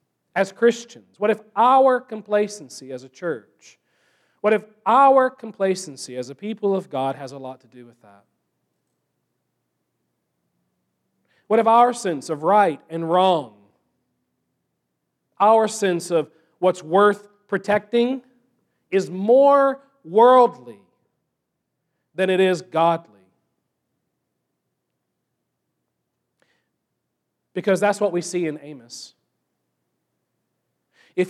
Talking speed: 105 wpm